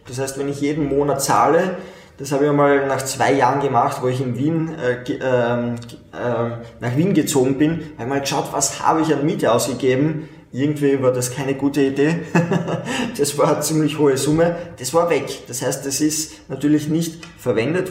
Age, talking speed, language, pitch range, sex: 20-39, 190 wpm, German, 115-150 Hz, male